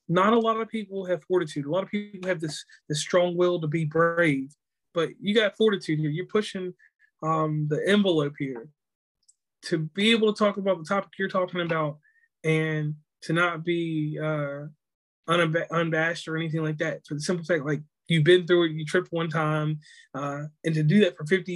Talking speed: 200 wpm